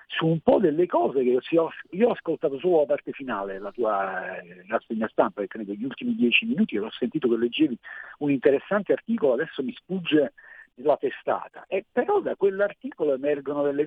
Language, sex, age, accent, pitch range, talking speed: Italian, male, 50-69, native, 125-185 Hz, 200 wpm